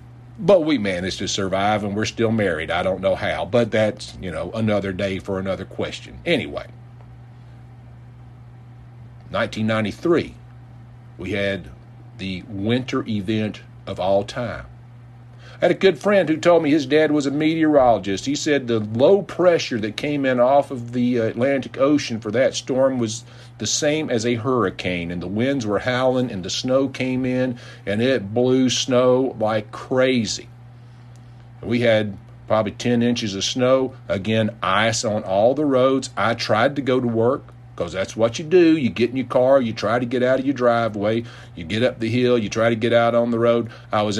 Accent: American